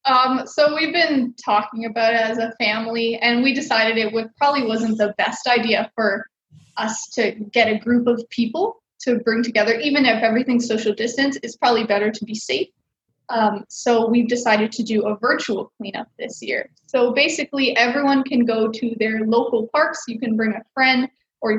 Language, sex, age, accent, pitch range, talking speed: English, female, 20-39, American, 220-255 Hz, 190 wpm